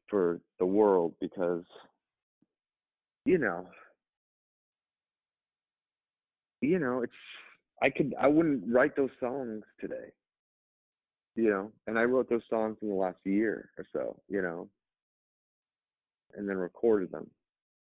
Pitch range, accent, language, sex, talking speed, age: 95-120 Hz, American, English, male, 120 wpm, 40-59